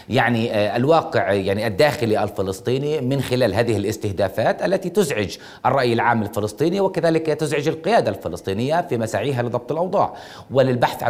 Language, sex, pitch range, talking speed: Arabic, male, 115-155 Hz, 125 wpm